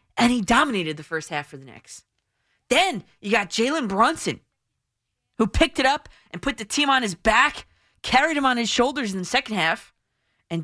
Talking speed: 195 wpm